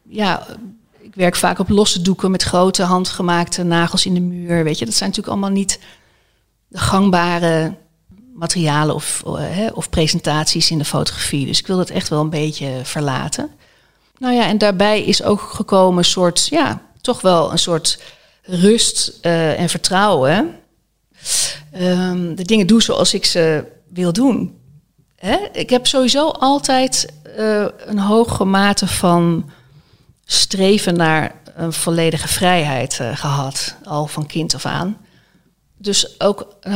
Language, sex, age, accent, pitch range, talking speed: Dutch, female, 40-59, Dutch, 165-205 Hz, 150 wpm